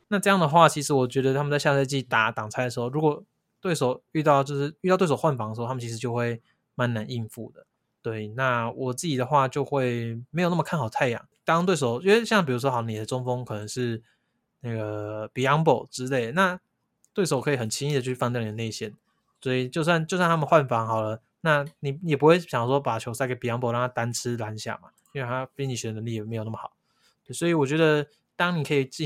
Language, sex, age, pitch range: Chinese, male, 20-39, 115-150 Hz